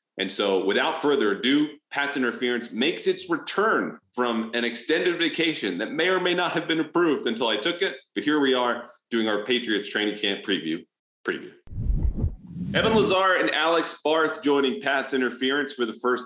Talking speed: 175 wpm